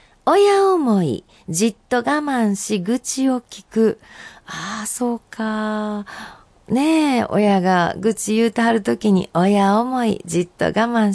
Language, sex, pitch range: Japanese, female, 185-270 Hz